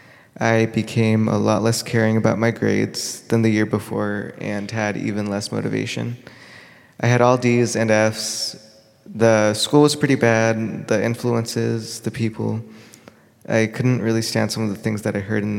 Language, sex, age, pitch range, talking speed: English, male, 20-39, 110-120 Hz, 175 wpm